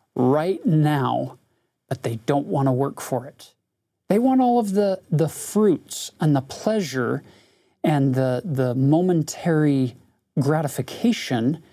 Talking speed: 130 wpm